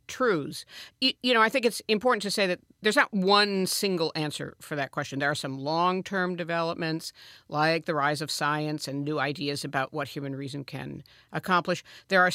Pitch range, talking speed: 150-200 Hz, 190 wpm